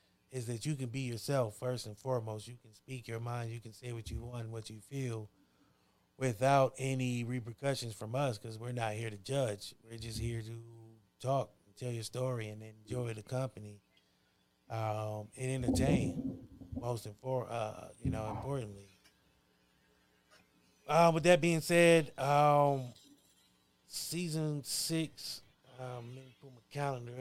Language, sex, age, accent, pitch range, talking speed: English, male, 20-39, American, 110-130 Hz, 155 wpm